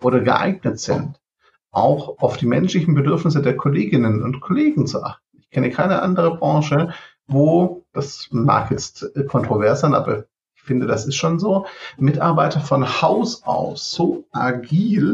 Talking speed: 150 wpm